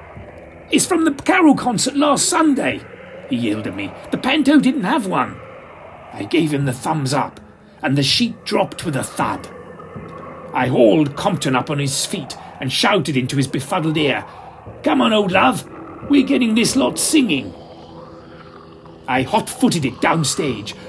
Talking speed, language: 160 wpm, English